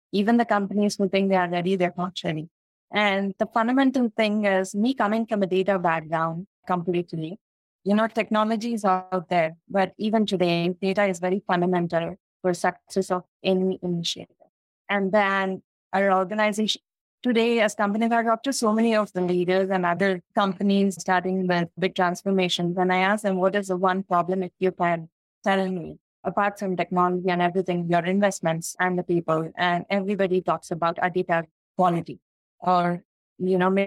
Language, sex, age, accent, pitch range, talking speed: English, female, 20-39, Indian, 180-210 Hz, 170 wpm